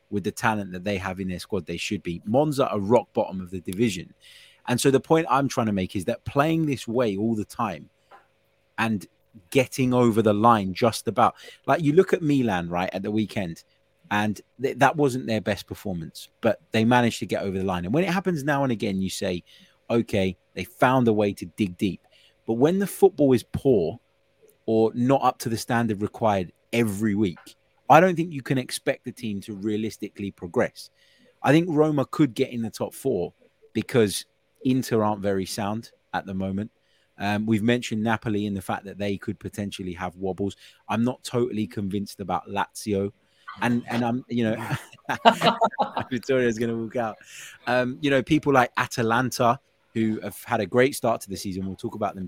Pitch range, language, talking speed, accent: 100-125 Hz, English, 200 wpm, British